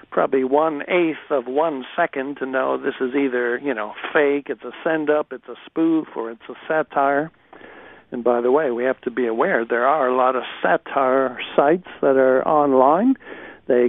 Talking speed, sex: 190 wpm, male